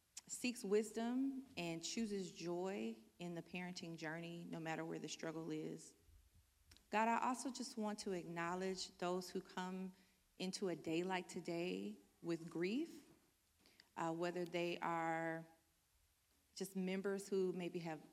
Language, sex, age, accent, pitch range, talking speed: English, female, 40-59, American, 165-200 Hz, 135 wpm